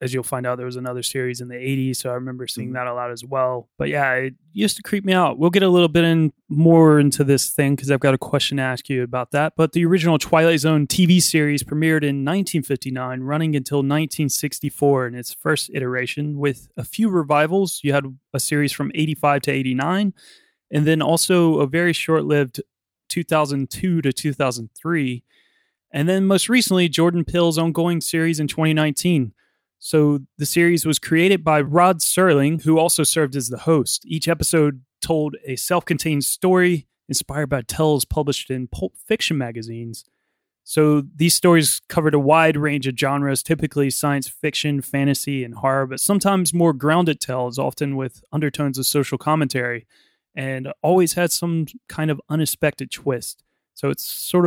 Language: English